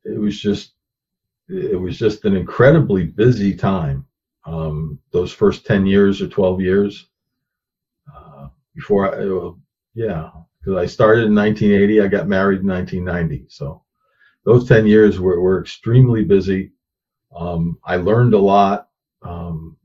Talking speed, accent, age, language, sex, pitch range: 140 wpm, American, 50-69, English, male, 95-115 Hz